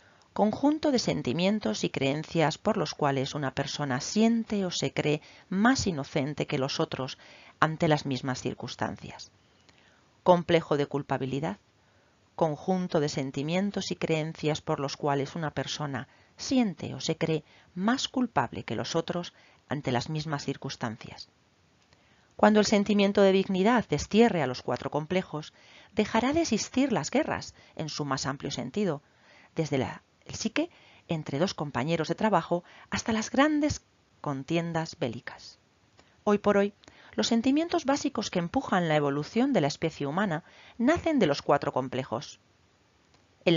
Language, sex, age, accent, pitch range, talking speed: Spanish, female, 40-59, Spanish, 140-210 Hz, 140 wpm